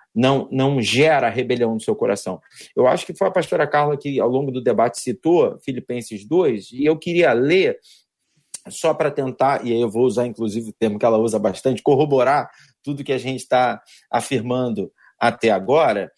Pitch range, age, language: 135-195 Hz, 40-59, Portuguese